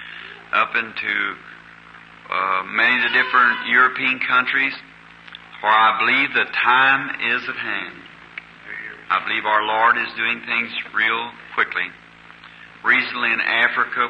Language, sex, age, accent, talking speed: English, male, 50-69, American, 125 wpm